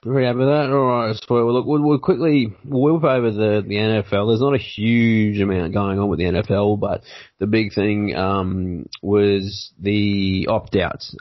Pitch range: 95-105 Hz